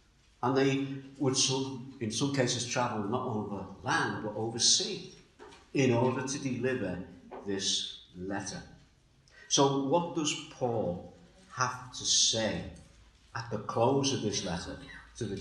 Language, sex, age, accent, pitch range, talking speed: English, male, 50-69, British, 100-135 Hz, 130 wpm